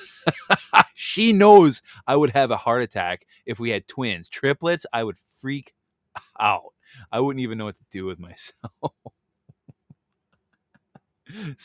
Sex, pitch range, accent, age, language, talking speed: male, 95-120 Hz, American, 20-39, English, 135 wpm